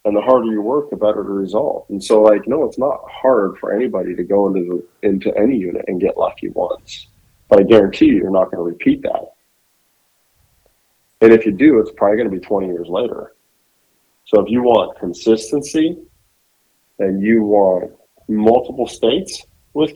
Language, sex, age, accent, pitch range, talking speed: English, male, 40-59, American, 100-120 Hz, 185 wpm